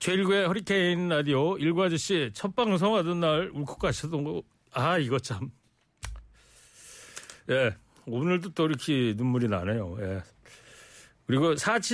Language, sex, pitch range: Korean, male, 130-180 Hz